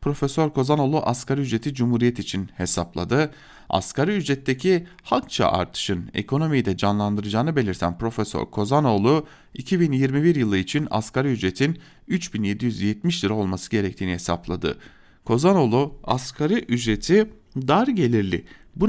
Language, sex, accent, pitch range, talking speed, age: German, male, Turkish, 100-145 Hz, 105 wpm, 40-59